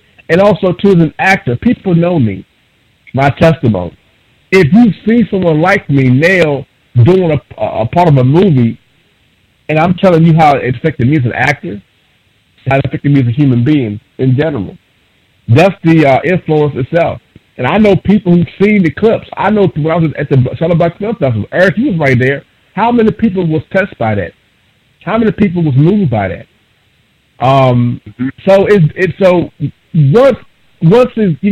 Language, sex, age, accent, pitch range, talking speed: English, male, 50-69, American, 125-175 Hz, 185 wpm